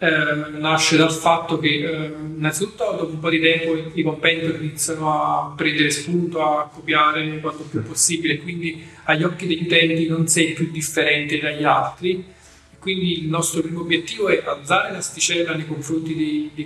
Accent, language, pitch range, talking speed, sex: native, Italian, 155-165 Hz, 175 wpm, male